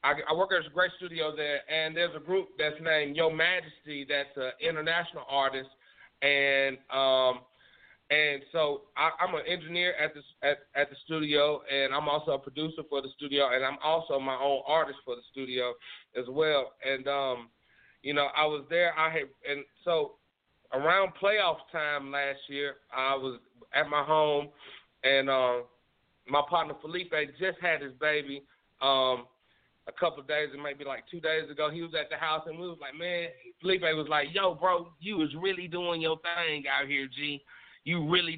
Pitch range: 140-185 Hz